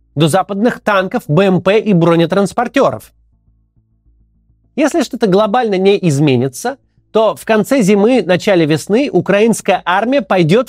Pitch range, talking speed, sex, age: 170-250 Hz, 110 wpm, male, 30-49